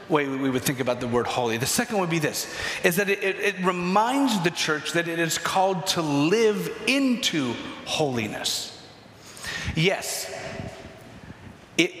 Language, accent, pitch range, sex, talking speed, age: English, American, 145-195 Hz, male, 150 wpm, 40-59